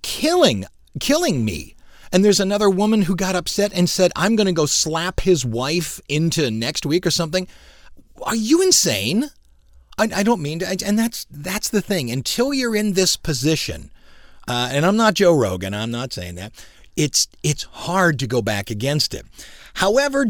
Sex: male